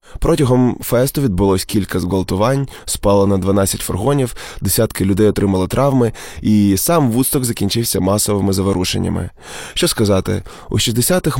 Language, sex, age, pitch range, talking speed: Ukrainian, male, 20-39, 100-125 Hz, 120 wpm